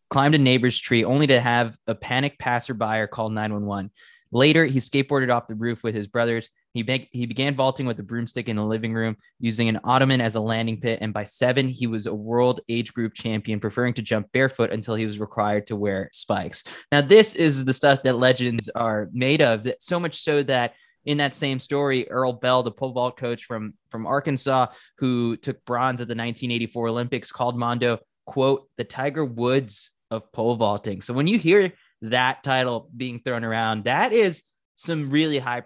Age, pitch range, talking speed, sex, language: 20-39, 115-130 Hz, 210 wpm, male, English